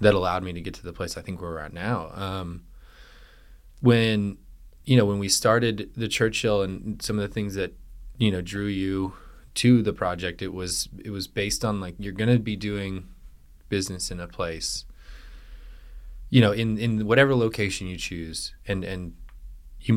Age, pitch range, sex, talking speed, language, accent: 20-39, 85-105 Hz, male, 185 wpm, English, American